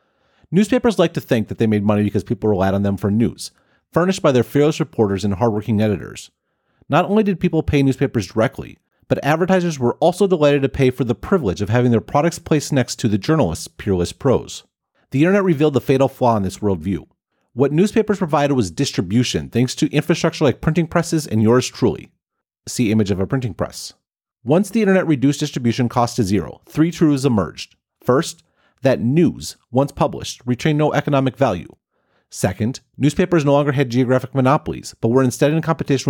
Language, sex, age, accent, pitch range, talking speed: English, male, 40-59, American, 115-155 Hz, 185 wpm